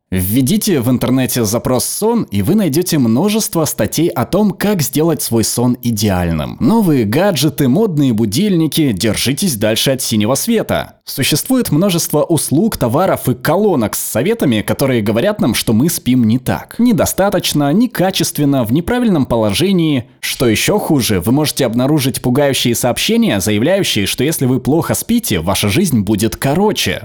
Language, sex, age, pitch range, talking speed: Russian, male, 20-39, 115-165 Hz, 145 wpm